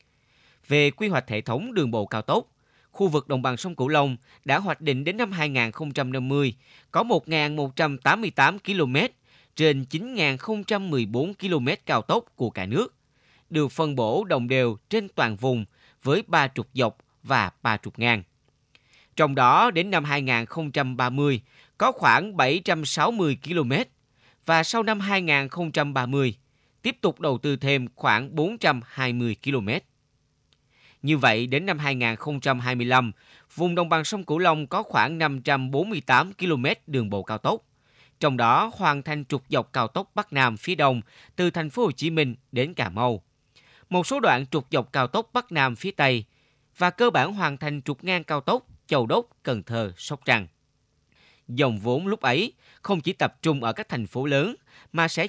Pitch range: 125-165 Hz